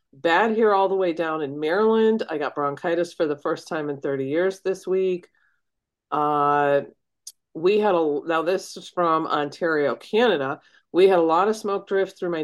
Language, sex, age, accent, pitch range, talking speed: English, female, 40-59, American, 145-190 Hz, 190 wpm